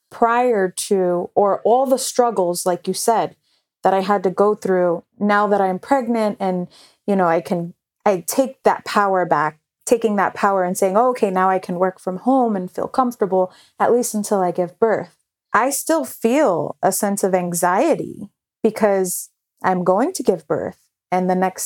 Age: 30-49